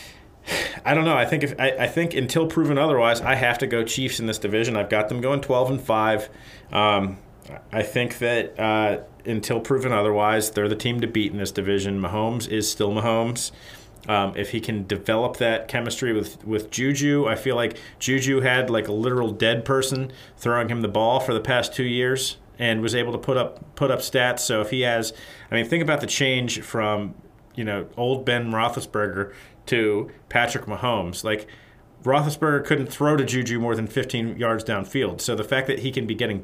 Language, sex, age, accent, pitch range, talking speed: English, male, 40-59, American, 105-125 Hz, 205 wpm